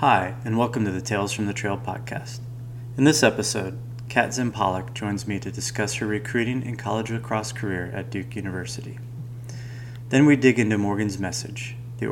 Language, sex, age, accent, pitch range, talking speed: English, male, 30-49, American, 105-120 Hz, 175 wpm